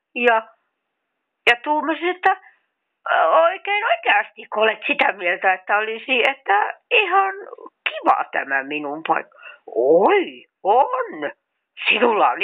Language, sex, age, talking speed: Finnish, female, 60-79, 105 wpm